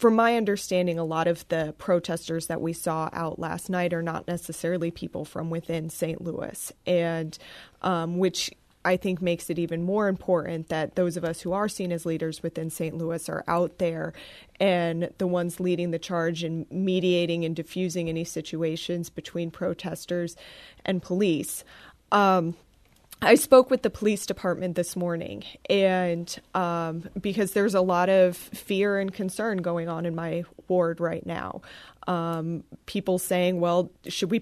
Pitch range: 170-190 Hz